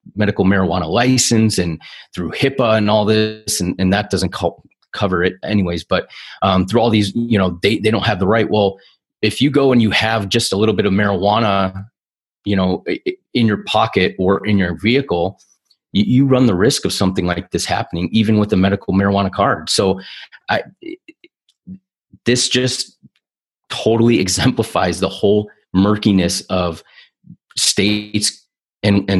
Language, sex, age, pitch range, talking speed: English, male, 30-49, 95-105 Hz, 165 wpm